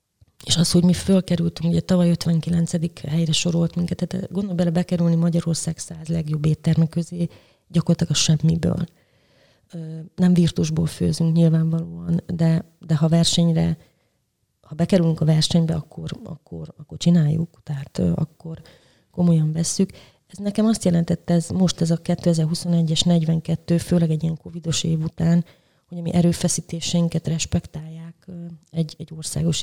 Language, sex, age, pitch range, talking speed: Hungarian, female, 30-49, 160-175 Hz, 135 wpm